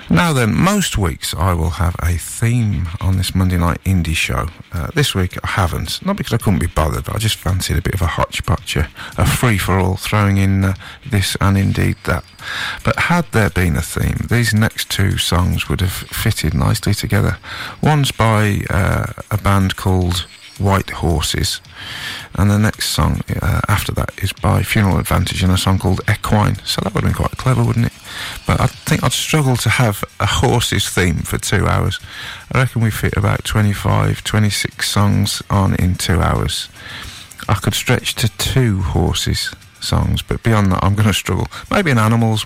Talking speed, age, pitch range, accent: 190 wpm, 50-69, 95-115 Hz, British